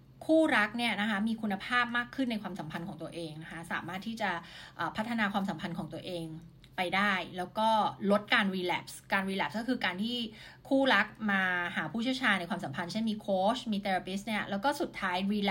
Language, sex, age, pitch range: Thai, female, 20-39, 185-235 Hz